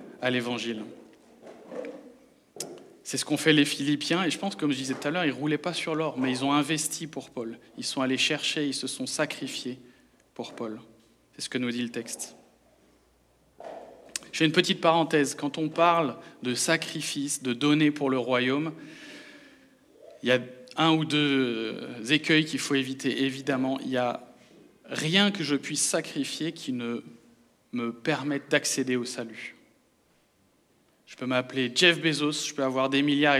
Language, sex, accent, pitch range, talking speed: French, male, French, 125-155 Hz, 175 wpm